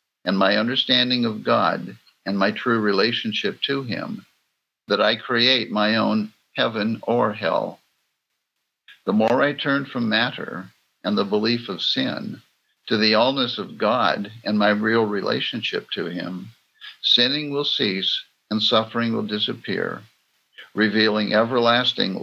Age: 60-79